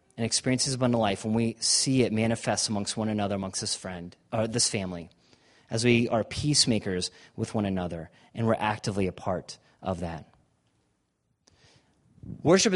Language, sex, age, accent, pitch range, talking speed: English, male, 30-49, American, 105-140 Hz, 160 wpm